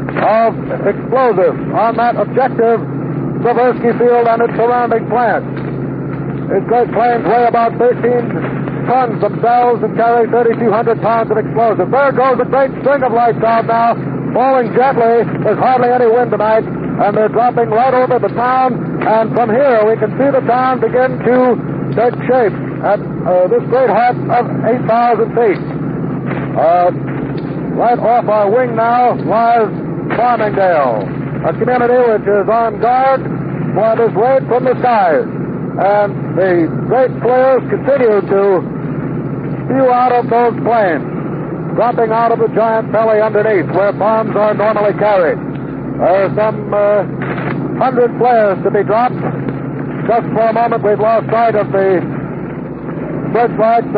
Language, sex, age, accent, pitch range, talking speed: English, male, 60-79, American, 205-240 Hz, 145 wpm